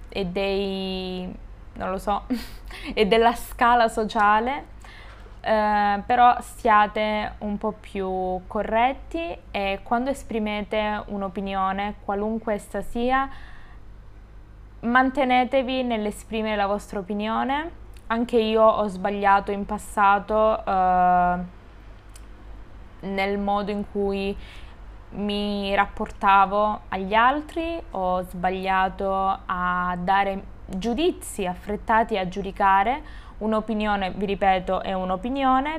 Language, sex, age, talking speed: Italian, female, 20-39, 95 wpm